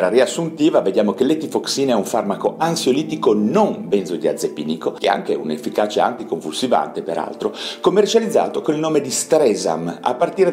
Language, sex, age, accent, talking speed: Italian, male, 40-59, native, 150 wpm